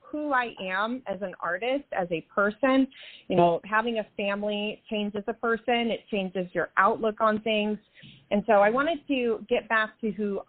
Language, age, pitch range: English, 30-49, 200-245 Hz